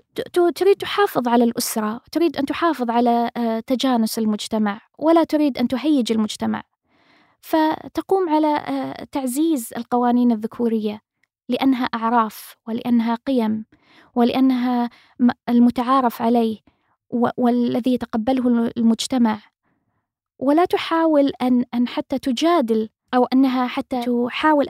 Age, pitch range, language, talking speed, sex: 20-39, 230-285 Hz, Arabic, 95 wpm, female